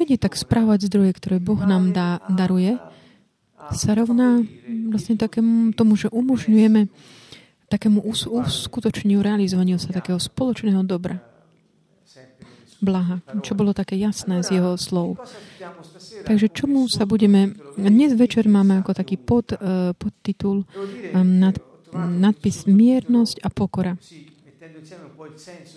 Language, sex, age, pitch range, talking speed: Slovak, female, 30-49, 185-215 Hz, 110 wpm